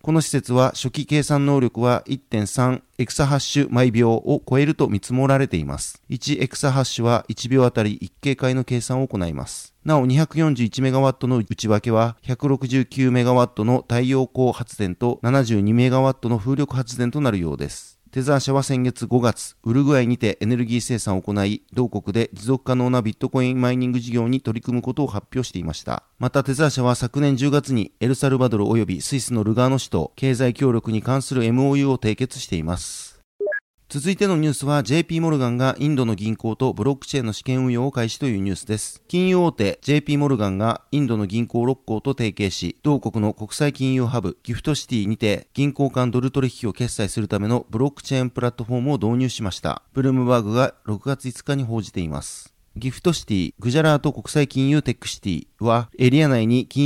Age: 40-59